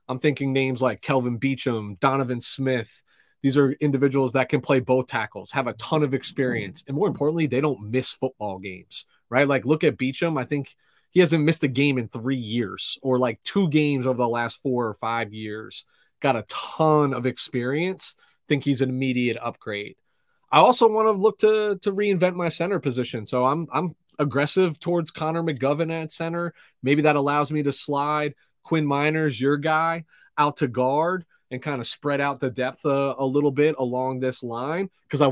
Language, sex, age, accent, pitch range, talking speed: English, male, 30-49, American, 125-150 Hz, 195 wpm